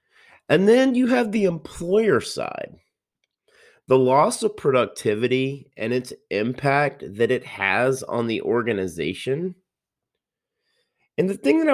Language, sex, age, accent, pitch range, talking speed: English, male, 30-49, American, 105-175 Hz, 125 wpm